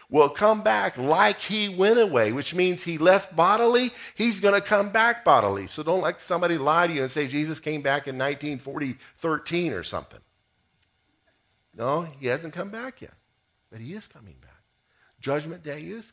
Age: 50-69